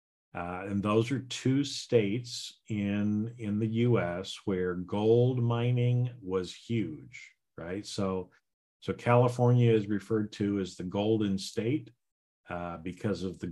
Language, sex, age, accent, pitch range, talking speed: English, male, 50-69, American, 95-120 Hz, 135 wpm